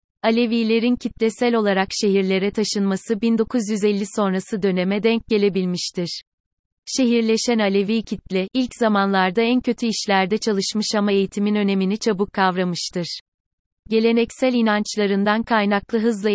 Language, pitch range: Turkish, 190-220 Hz